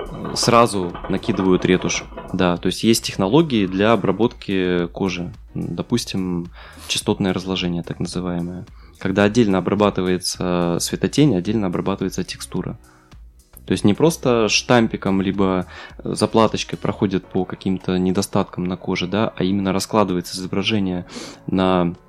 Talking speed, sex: 110 wpm, male